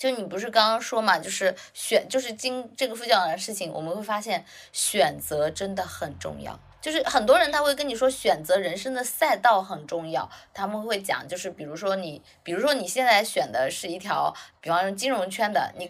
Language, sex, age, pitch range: Chinese, female, 20-39, 175-255 Hz